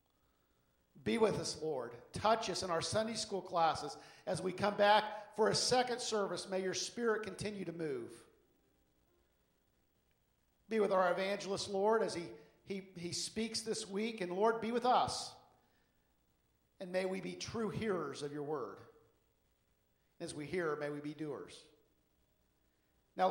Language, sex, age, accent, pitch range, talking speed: English, male, 50-69, American, 150-205 Hz, 150 wpm